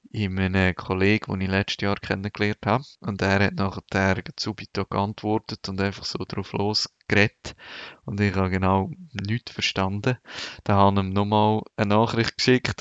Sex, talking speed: male, 165 wpm